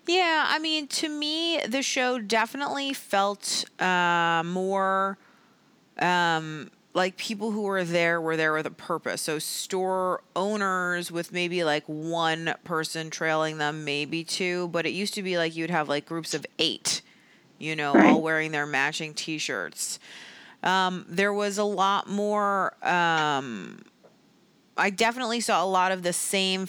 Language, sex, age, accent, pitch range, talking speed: English, female, 30-49, American, 160-205 Hz, 150 wpm